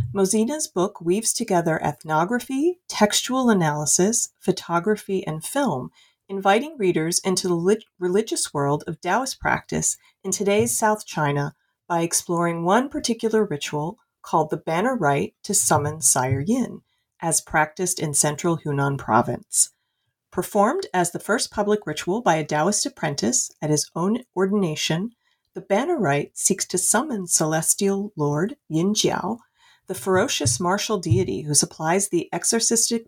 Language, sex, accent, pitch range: English, female, American, 155-215 Hz